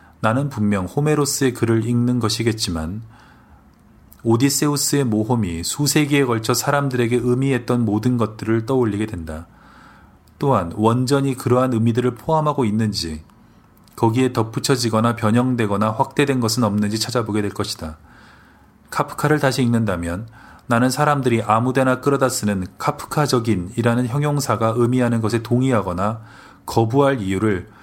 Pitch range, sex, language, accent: 105-125 Hz, male, Korean, native